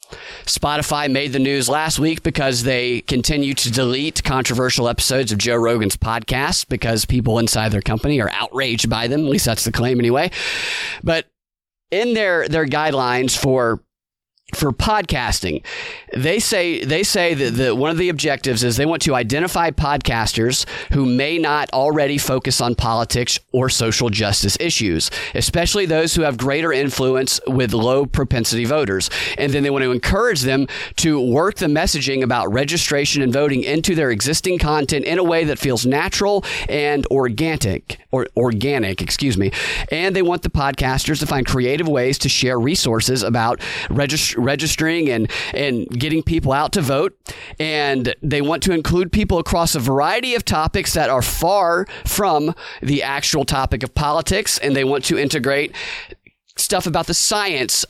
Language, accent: English, American